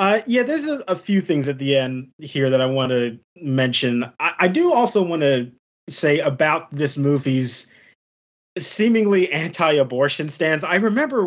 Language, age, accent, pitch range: English, 30-49, American, 140-195 Hz